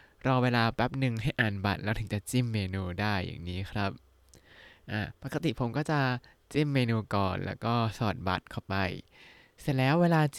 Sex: male